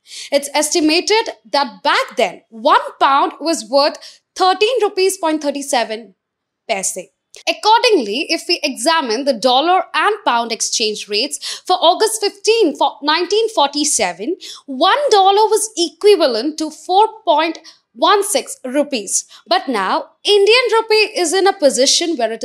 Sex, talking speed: female, 120 wpm